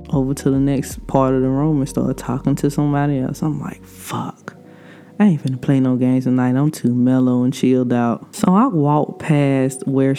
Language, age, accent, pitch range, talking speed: English, 20-39, American, 130-170 Hz, 205 wpm